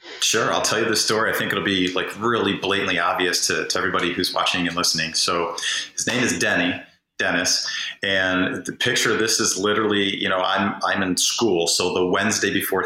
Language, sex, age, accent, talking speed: English, male, 30-49, American, 205 wpm